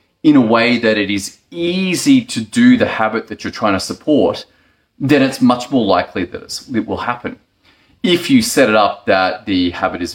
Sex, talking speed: male, 200 wpm